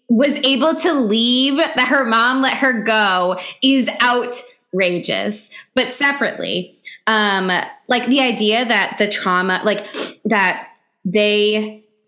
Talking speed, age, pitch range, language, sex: 120 wpm, 20-39, 185-245 Hz, English, female